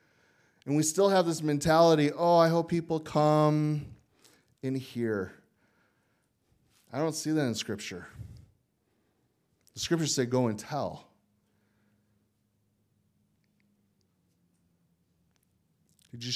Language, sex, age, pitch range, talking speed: English, male, 30-49, 100-125 Hz, 100 wpm